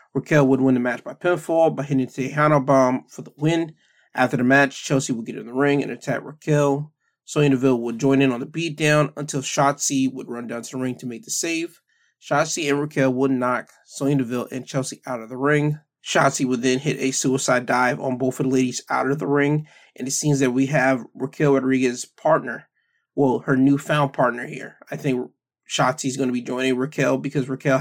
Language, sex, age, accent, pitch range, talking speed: English, male, 20-39, American, 130-145 Hz, 220 wpm